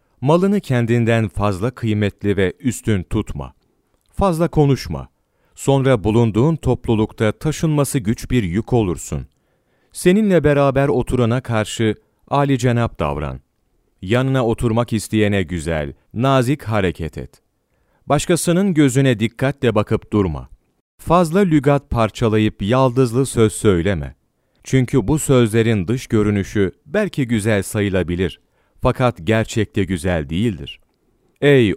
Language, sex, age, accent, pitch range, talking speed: Turkish, male, 40-59, native, 95-130 Hz, 105 wpm